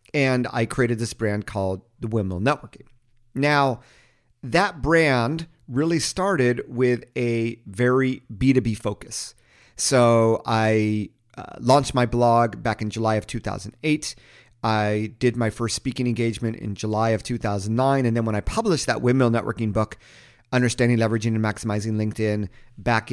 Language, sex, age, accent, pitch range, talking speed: English, male, 40-59, American, 110-135 Hz, 145 wpm